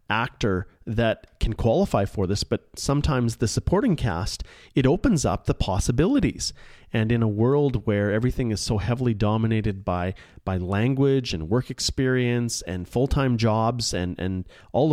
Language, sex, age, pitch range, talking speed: English, male, 30-49, 105-125 Hz, 155 wpm